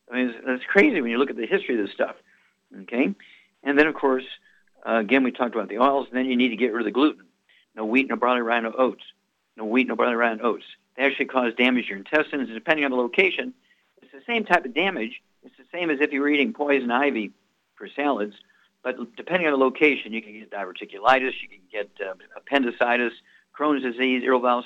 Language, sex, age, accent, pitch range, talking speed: English, male, 50-69, American, 115-135 Hz, 235 wpm